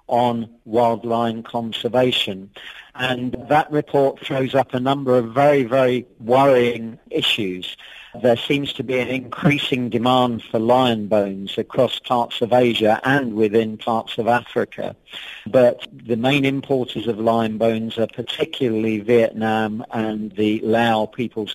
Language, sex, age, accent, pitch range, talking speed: English, male, 40-59, British, 115-130 Hz, 135 wpm